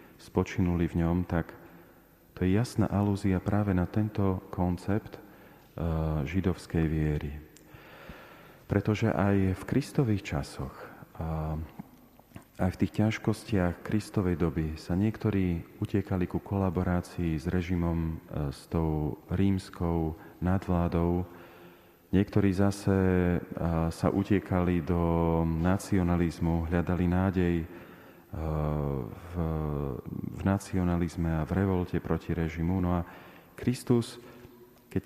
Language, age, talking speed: Slovak, 40-59, 95 wpm